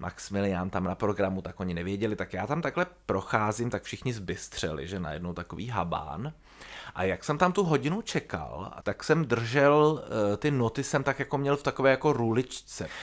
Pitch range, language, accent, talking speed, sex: 105-165 Hz, Czech, native, 180 wpm, male